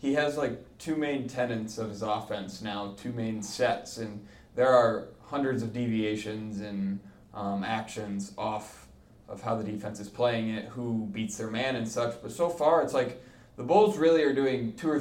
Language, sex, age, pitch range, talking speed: English, male, 20-39, 110-125 Hz, 190 wpm